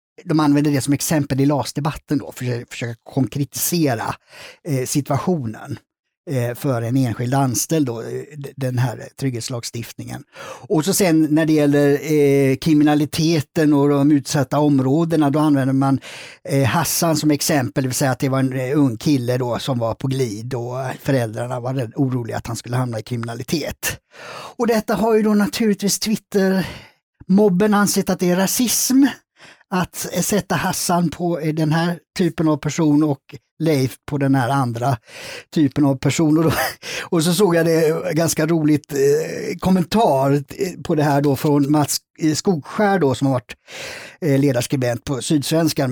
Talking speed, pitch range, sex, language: 155 wpm, 130-165 Hz, male, Swedish